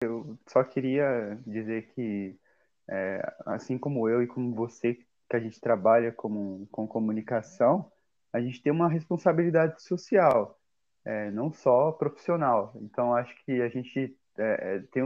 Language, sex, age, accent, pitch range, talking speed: Portuguese, male, 20-39, Brazilian, 115-150 Hz, 130 wpm